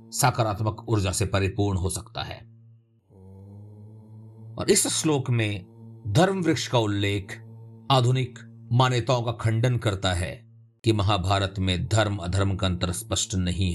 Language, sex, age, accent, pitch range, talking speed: Hindi, male, 50-69, native, 105-115 Hz, 130 wpm